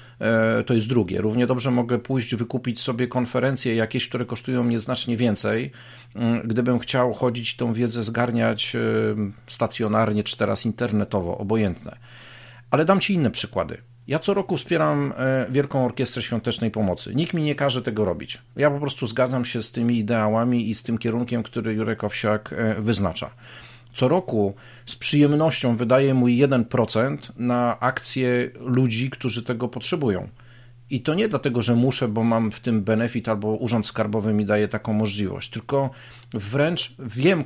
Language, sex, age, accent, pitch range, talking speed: Polish, male, 40-59, native, 115-135 Hz, 155 wpm